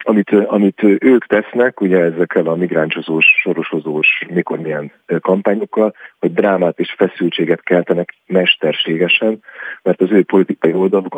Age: 50-69